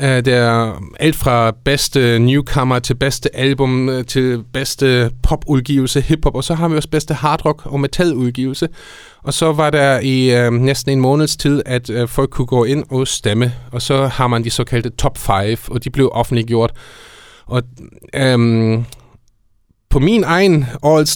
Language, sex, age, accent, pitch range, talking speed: Danish, male, 30-49, native, 115-135 Hz, 160 wpm